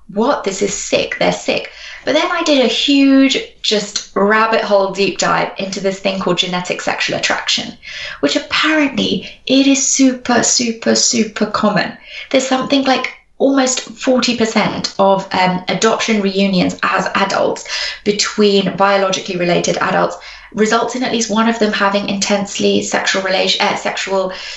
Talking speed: 150 wpm